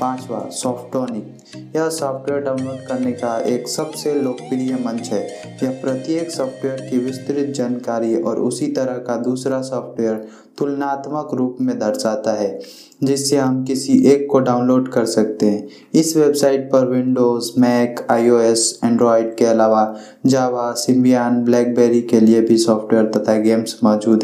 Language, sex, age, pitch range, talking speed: Hindi, male, 20-39, 115-130 Hz, 140 wpm